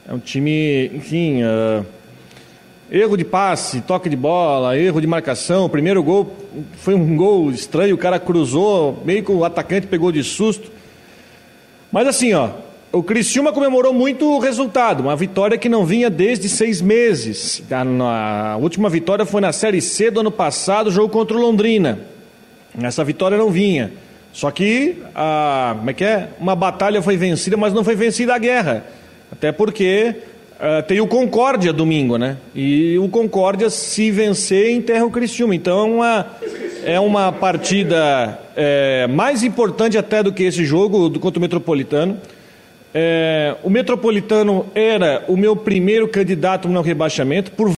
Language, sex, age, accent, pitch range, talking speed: Portuguese, male, 40-59, Brazilian, 165-225 Hz, 150 wpm